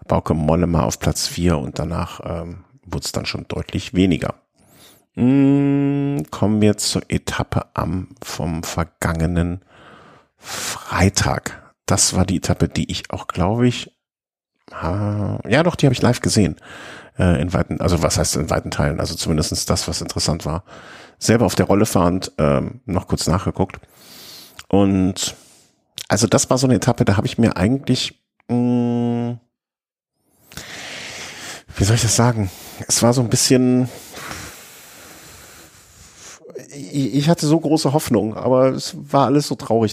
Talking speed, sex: 150 wpm, male